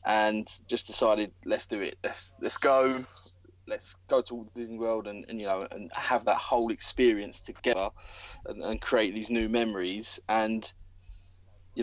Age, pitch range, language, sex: 20-39, 95-120 Hz, English, male